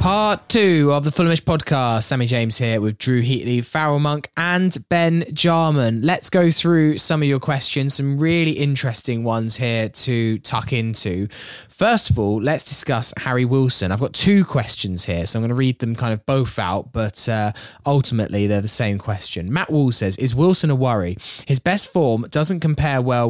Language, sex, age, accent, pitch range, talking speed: English, male, 20-39, British, 110-145 Hz, 190 wpm